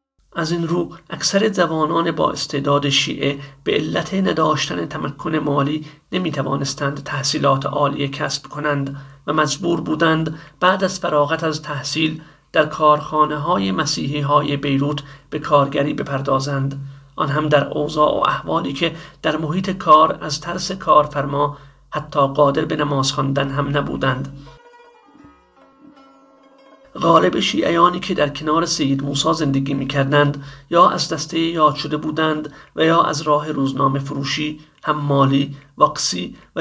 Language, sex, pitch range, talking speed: Persian, male, 140-160 Hz, 130 wpm